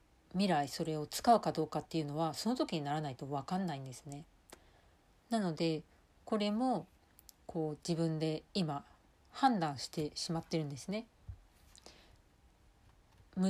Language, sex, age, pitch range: Japanese, female, 40-59, 140-195 Hz